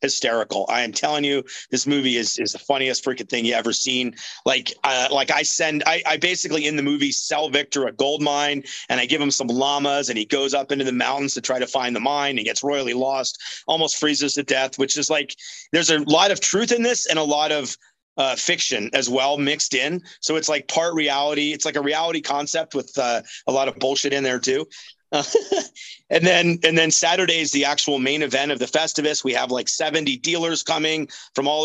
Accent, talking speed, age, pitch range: American, 230 wpm, 30-49, 135-160 Hz